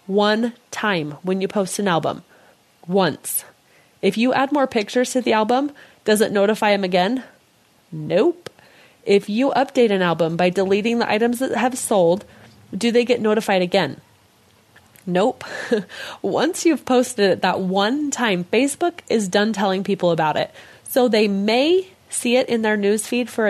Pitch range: 180-235 Hz